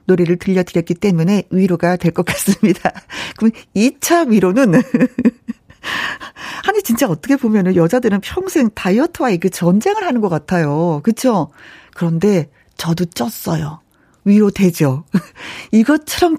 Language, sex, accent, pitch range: Korean, female, native, 185-270 Hz